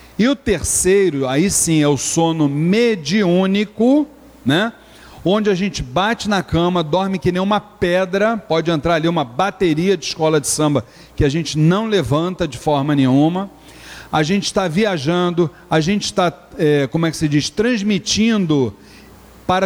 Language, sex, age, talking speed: Portuguese, male, 40-59, 160 wpm